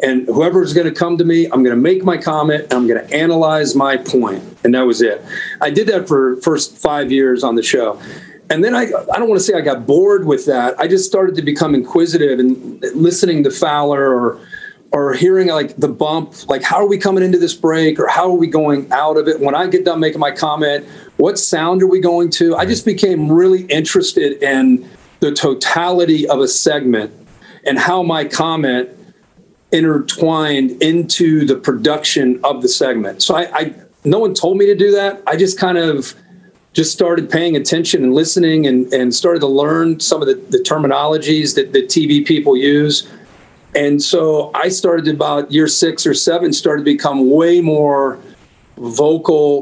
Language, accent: English, American